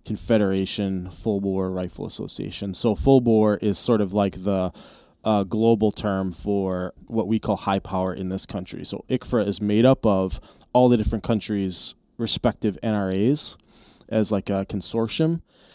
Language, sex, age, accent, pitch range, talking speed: English, male, 20-39, American, 100-115 Hz, 155 wpm